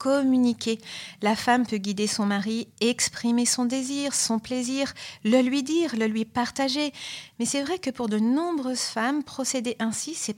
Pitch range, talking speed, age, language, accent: 210-255 Hz, 170 wpm, 40-59, French, French